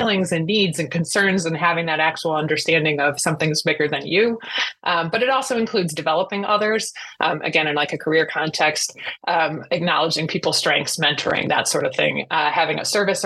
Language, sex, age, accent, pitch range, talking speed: English, female, 20-39, American, 155-190 Hz, 190 wpm